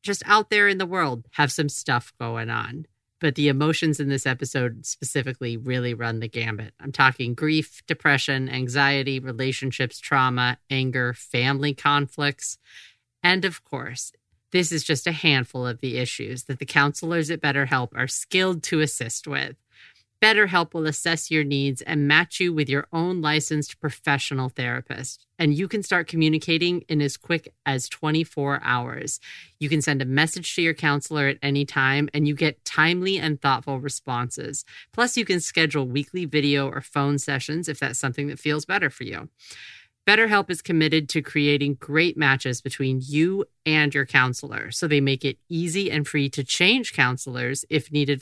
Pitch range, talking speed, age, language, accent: 130-160 Hz, 170 wpm, 40-59, English, American